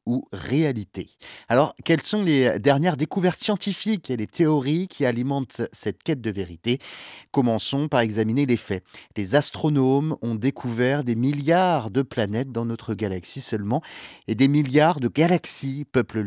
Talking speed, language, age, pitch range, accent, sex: 150 wpm, French, 40-59, 110-150 Hz, French, male